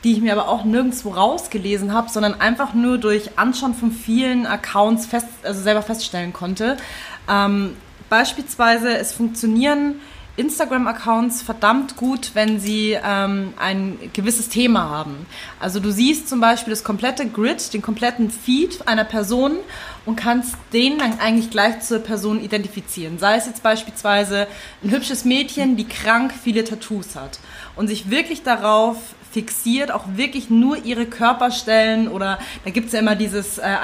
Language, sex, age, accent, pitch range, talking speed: German, female, 20-39, German, 205-240 Hz, 150 wpm